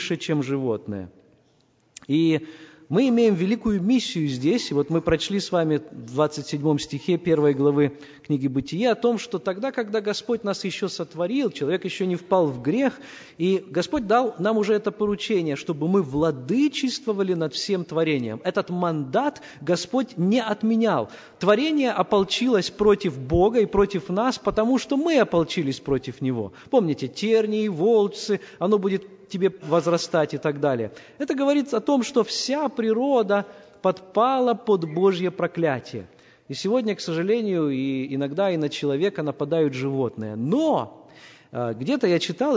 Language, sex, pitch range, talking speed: Russian, male, 150-215 Hz, 145 wpm